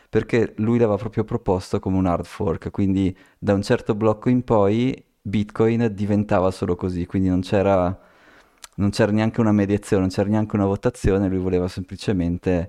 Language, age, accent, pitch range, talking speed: Italian, 20-39, native, 95-115 Hz, 170 wpm